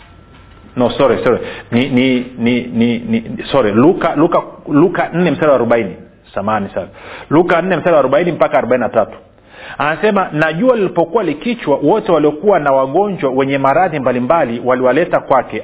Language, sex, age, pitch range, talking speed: Swahili, male, 40-59, 130-190 Hz, 140 wpm